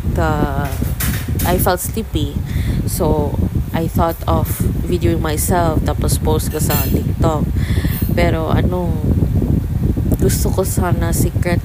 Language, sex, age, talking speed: English, female, 20-39, 110 wpm